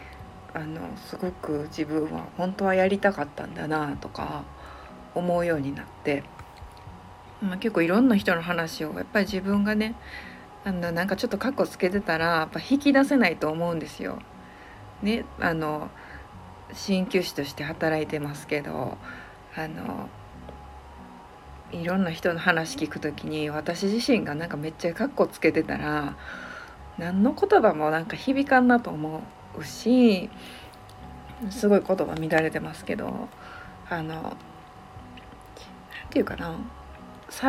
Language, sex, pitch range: Japanese, female, 145-210 Hz